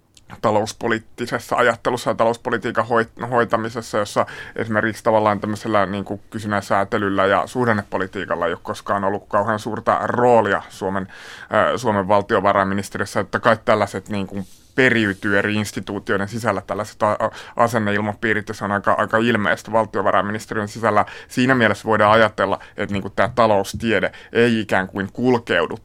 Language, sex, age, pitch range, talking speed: Finnish, male, 30-49, 105-125 Hz, 130 wpm